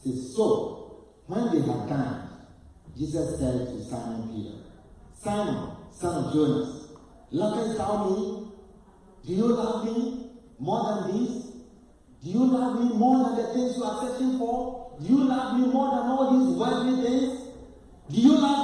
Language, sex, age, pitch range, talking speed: English, male, 50-69, 200-275 Hz, 160 wpm